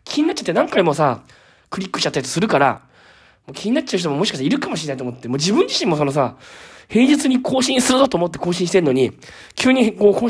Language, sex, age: Japanese, male, 20-39